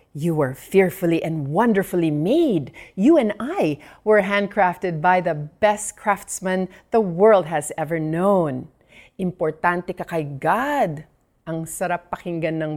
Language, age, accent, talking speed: Filipino, 40-59, native, 130 wpm